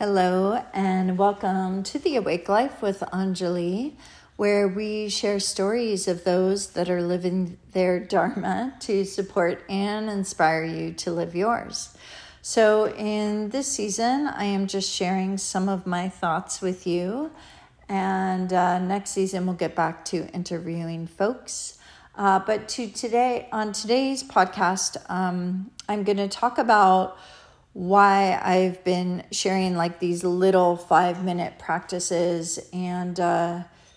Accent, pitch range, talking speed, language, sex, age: American, 180-205 Hz, 135 wpm, English, female, 40-59